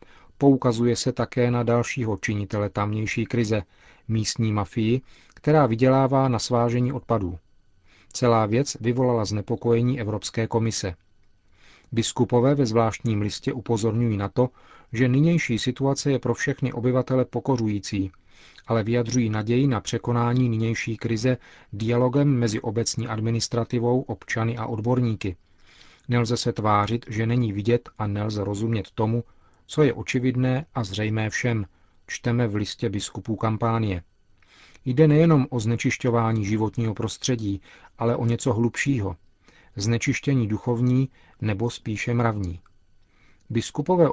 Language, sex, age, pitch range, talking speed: Czech, male, 40-59, 105-125 Hz, 120 wpm